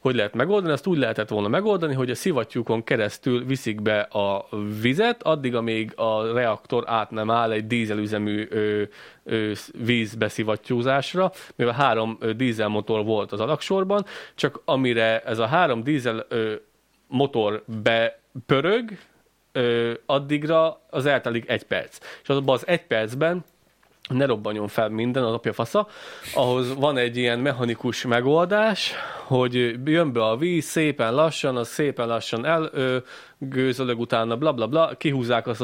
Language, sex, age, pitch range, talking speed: Hungarian, male, 30-49, 110-145 Hz, 135 wpm